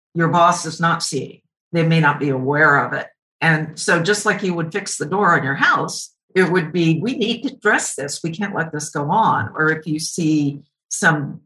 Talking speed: 225 wpm